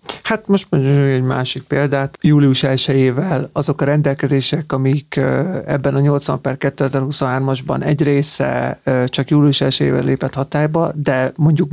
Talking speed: 135 wpm